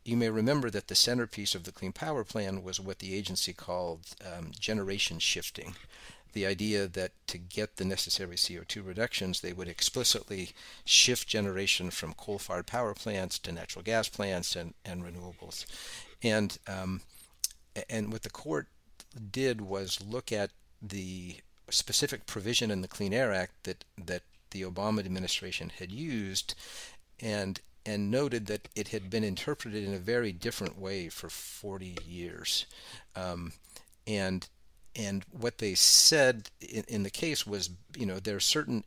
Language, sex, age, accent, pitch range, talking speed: English, male, 50-69, American, 95-110 Hz, 155 wpm